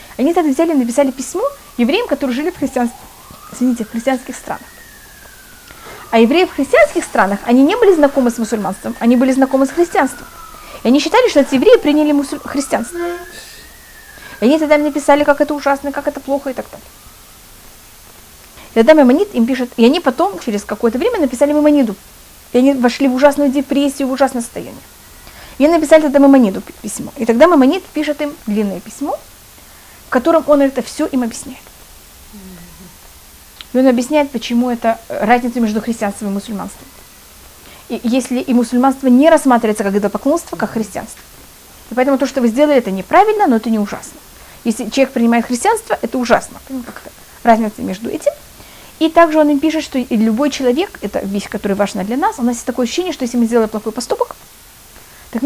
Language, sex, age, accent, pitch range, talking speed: Russian, female, 20-39, native, 235-300 Hz, 175 wpm